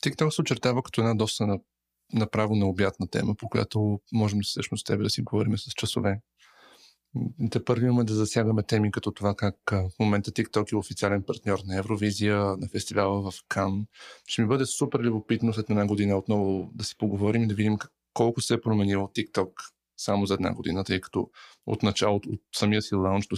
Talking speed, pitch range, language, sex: 195 wpm, 100-120 Hz, Bulgarian, male